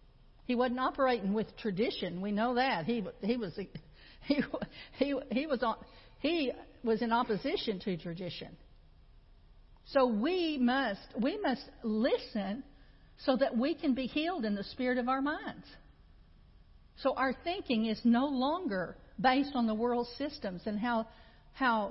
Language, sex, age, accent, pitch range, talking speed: English, female, 50-69, American, 210-260 Hz, 150 wpm